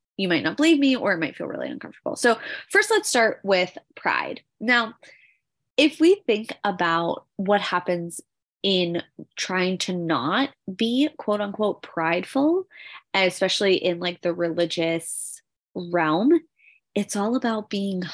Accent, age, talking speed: American, 20-39, 140 wpm